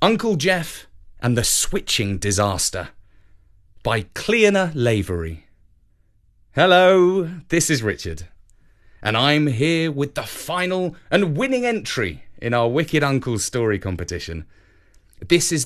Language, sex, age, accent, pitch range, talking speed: English, male, 30-49, British, 95-140 Hz, 115 wpm